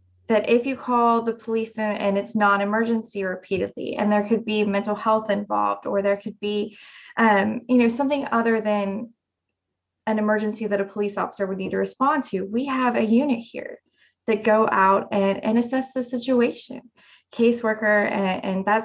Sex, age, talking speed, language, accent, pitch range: female, 20-39, 180 wpm, English, American, 205-235 Hz